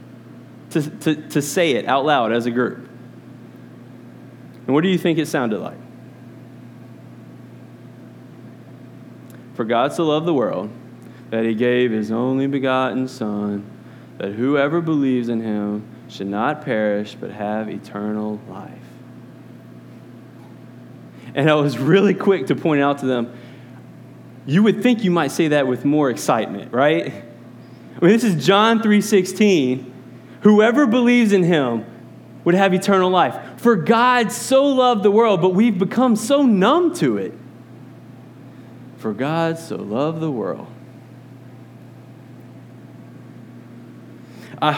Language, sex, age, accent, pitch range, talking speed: English, male, 20-39, American, 120-180 Hz, 135 wpm